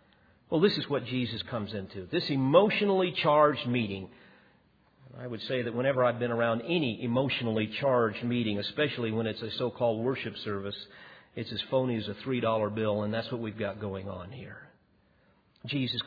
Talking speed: 175 wpm